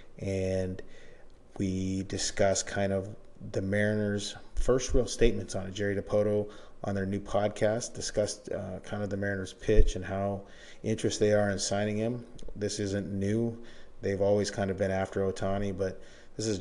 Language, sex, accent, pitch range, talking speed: English, male, American, 95-105 Hz, 165 wpm